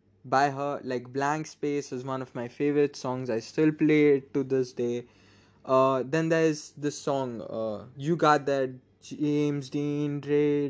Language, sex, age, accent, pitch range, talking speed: English, male, 20-39, Indian, 120-150 Hz, 165 wpm